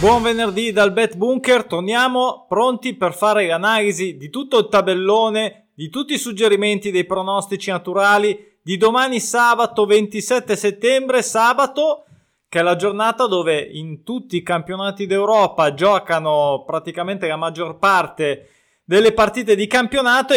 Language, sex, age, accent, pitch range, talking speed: Italian, male, 20-39, native, 190-245 Hz, 135 wpm